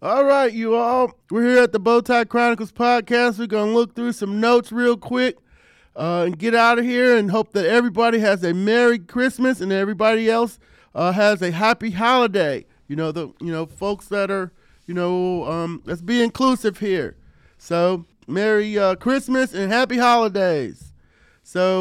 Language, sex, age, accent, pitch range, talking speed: English, male, 40-59, American, 185-225 Hz, 180 wpm